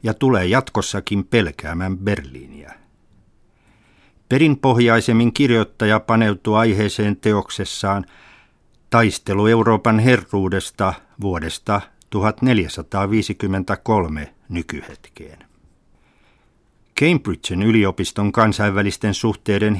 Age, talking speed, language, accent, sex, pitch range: 60-79, 60 wpm, Finnish, native, male, 95-115 Hz